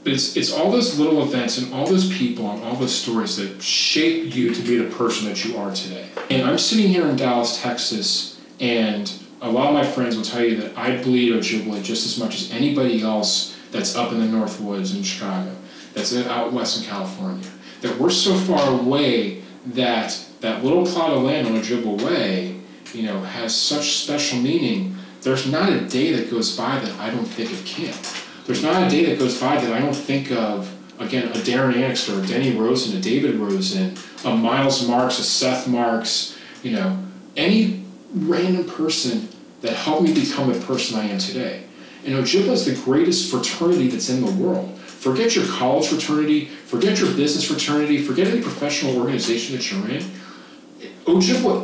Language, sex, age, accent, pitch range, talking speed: English, male, 30-49, American, 115-175 Hz, 195 wpm